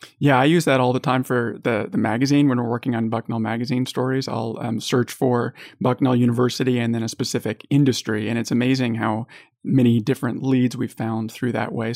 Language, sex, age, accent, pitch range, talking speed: English, male, 30-49, American, 125-140 Hz, 205 wpm